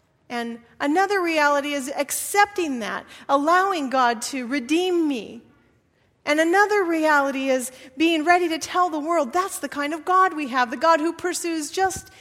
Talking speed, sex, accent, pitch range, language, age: 160 wpm, female, American, 245-330 Hz, English, 40-59